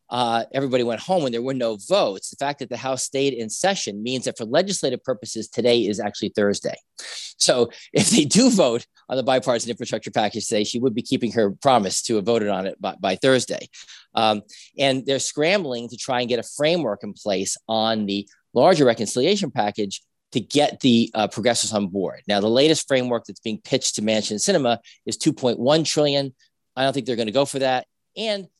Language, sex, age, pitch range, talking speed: English, male, 40-59, 105-135 Hz, 205 wpm